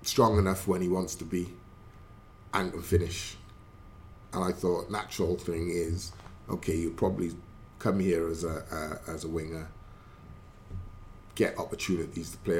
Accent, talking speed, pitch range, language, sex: British, 150 wpm, 85-110 Hz, English, male